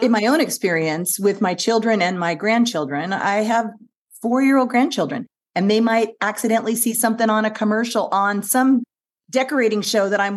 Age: 40-59